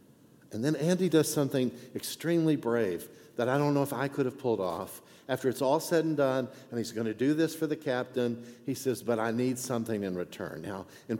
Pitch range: 100-130 Hz